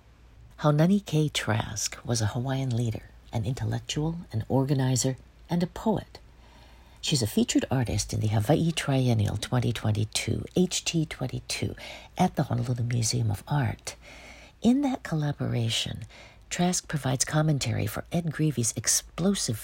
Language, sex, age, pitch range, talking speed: English, female, 60-79, 115-155 Hz, 120 wpm